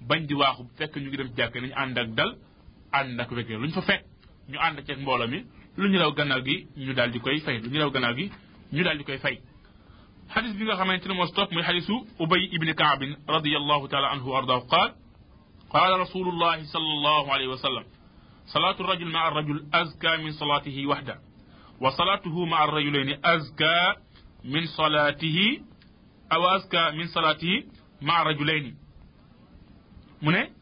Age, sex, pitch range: 30-49, male, 135-165 Hz